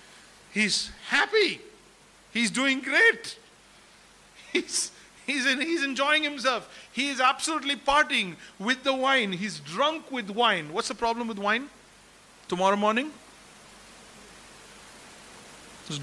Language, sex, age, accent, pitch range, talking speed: English, male, 50-69, Indian, 195-260 Hz, 110 wpm